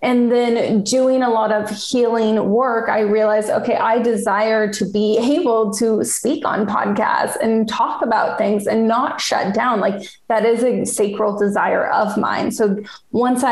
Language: English